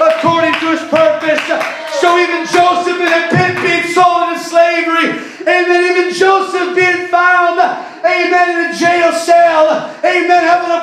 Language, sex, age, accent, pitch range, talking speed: English, male, 30-49, American, 225-350 Hz, 150 wpm